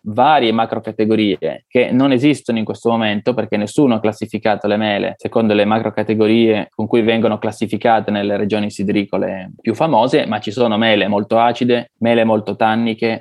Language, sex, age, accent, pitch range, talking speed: Italian, male, 20-39, native, 110-120 Hz, 160 wpm